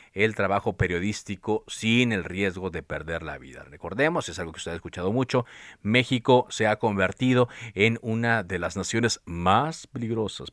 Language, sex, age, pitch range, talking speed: Spanish, male, 40-59, 95-130 Hz, 165 wpm